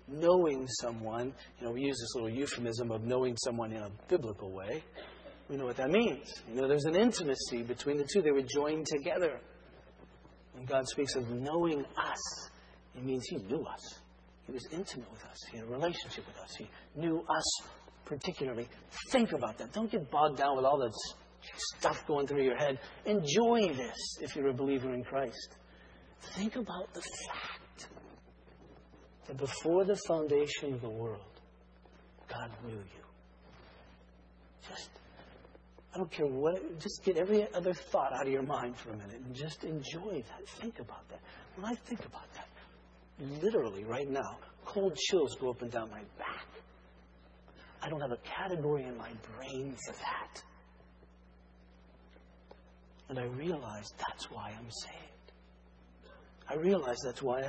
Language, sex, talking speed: English, male, 165 wpm